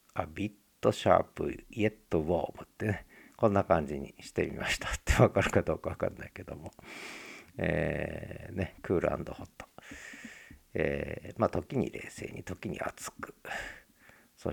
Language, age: Japanese, 50-69